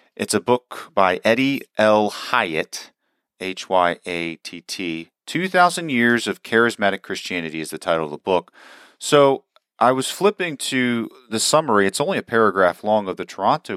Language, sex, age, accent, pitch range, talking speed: English, male, 40-59, American, 95-135 Hz, 150 wpm